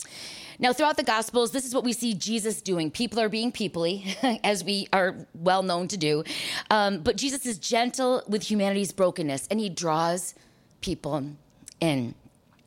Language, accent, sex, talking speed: English, American, female, 160 wpm